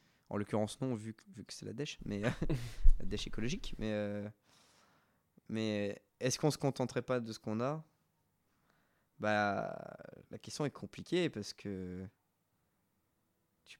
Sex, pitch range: male, 105-135 Hz